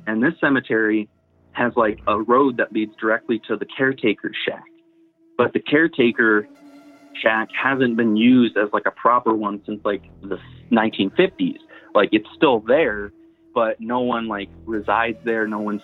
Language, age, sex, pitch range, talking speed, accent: English, 30-49, male, 100-125 Hz, 165 wpm, American